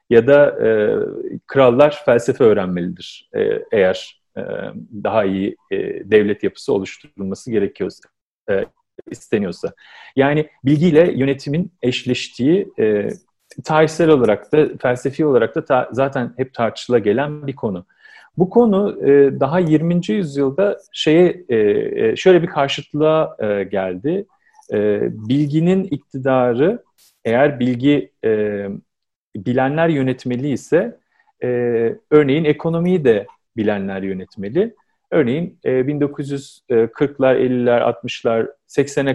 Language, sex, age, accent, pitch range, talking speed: Turkish, male, 40-59, native, 120-165 Hz, 105 wpm